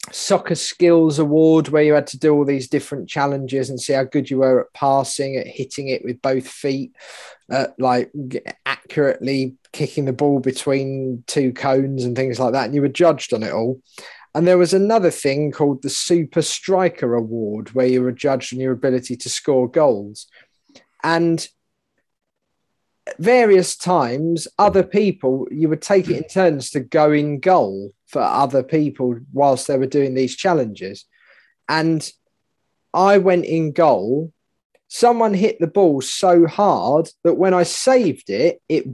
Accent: British